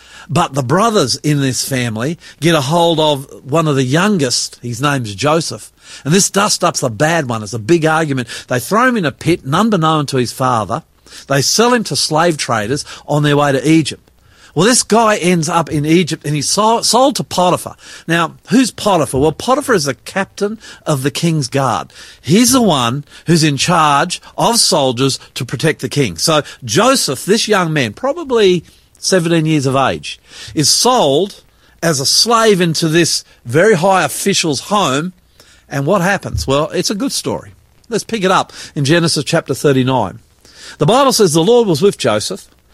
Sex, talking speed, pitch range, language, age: male, 185 wpm, 135-190 Hz, English, 50-69